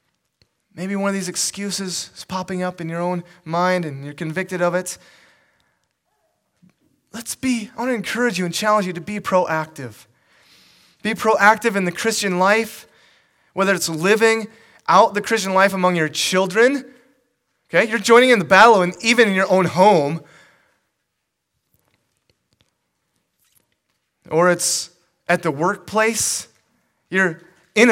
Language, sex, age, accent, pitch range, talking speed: English, male, 30-49, American, 135-195 Hz, 140 wpm